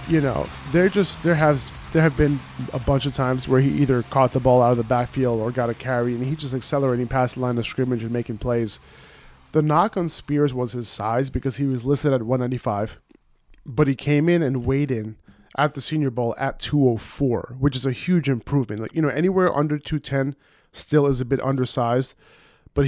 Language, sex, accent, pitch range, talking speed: English, male, American, 120-145 Hz, 220 wpm